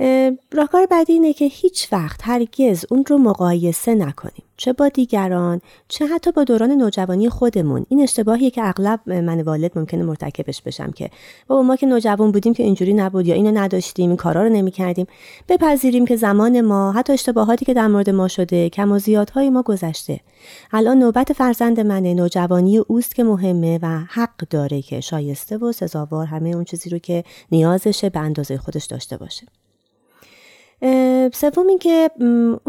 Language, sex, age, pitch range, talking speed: Persian, female, 30-49, 175-245 Hz, 165 wpm